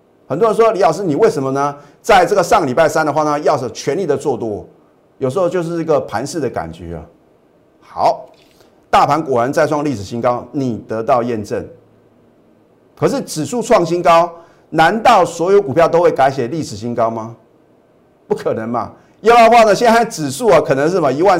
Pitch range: 140-205 Hz